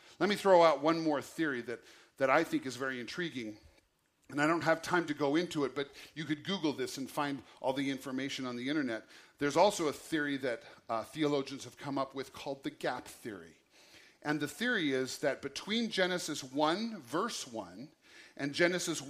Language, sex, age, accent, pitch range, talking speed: English, male, 50-69, American, 140-180 Hz, 200 wpm